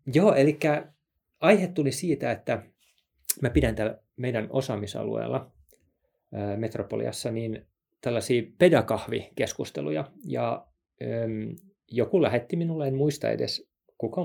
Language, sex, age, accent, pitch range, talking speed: Finnish, male, 30-49, native, 105-145 Hz, 95 wpm